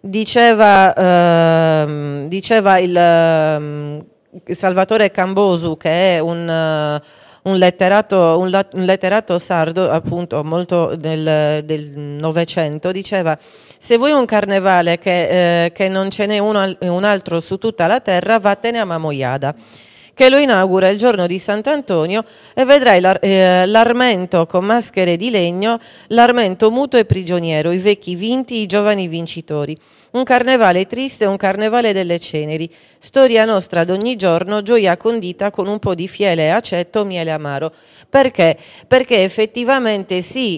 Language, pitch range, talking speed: Italian, 165-205 Hz, 140 wpm